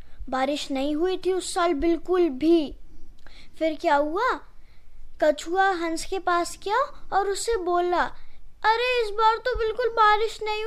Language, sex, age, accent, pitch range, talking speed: Hindi, female, 20-39, native, 330-430 Hz, 145 wpm